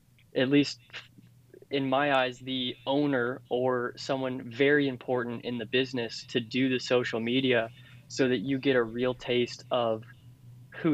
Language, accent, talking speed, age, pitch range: English, American, 155 wpm, 20-39, 120-135 Hz